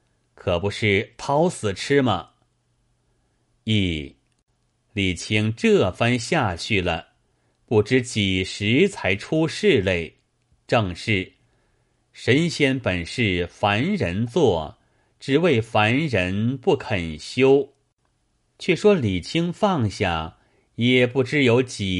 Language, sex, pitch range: Chinese, male, 95-130 Hz